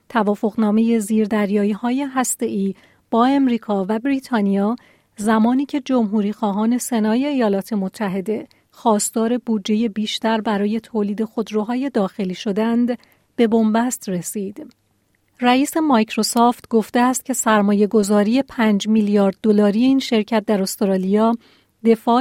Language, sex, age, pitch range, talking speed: Persian, female, 40-59, 210-240 Hz, 110 wpm